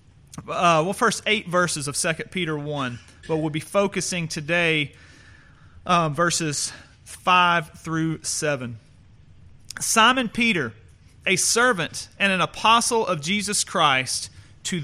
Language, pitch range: English, 145-195 Hz